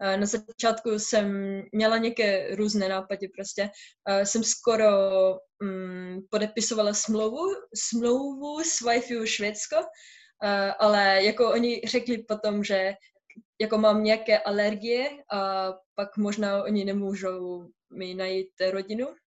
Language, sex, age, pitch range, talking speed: Czech, female, 20-39, 195-230 Hz, 110 wpm